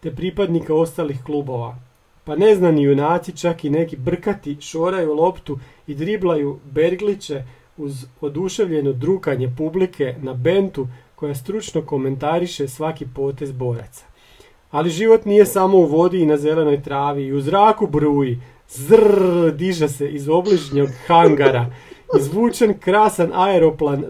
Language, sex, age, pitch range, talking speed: Croatian, male, 40-59, 145-180 Hz, 125 wpm